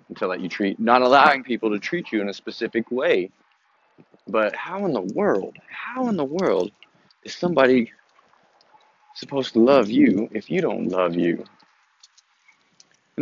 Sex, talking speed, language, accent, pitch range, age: male, 160 wpm, English, American, 110-135 Hz, 20-39